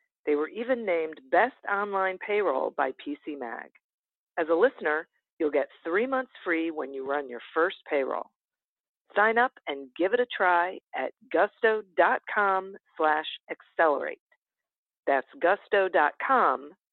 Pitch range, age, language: 155-205 Hz, 50-69, English